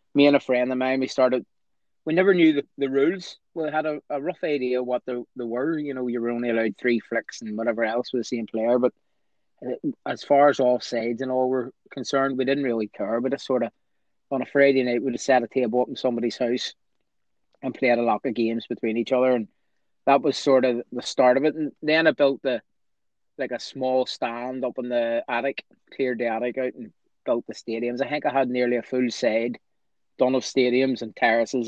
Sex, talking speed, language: male, 230 wpm, English